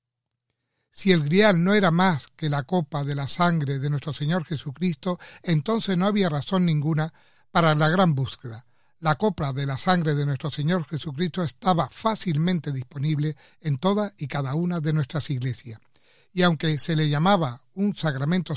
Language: Spanish